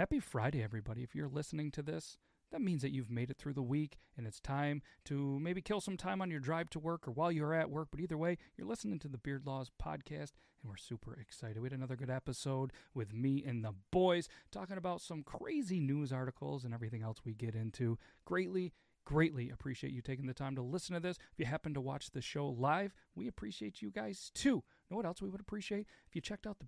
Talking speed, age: 240 wpm, 40-59